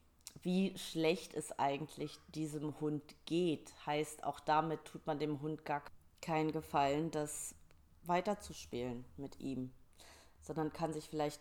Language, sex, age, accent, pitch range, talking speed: German, female, 30-49, German, 145-180 Hz, 130 wpm